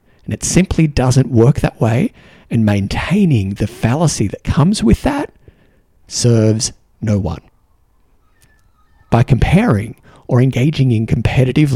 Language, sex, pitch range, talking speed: English, male, 100-135 Hz, 115 wpm